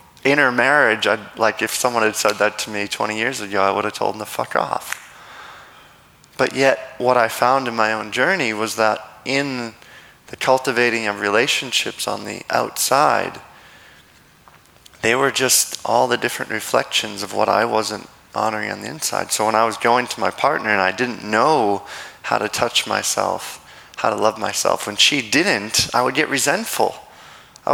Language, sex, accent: English, male, American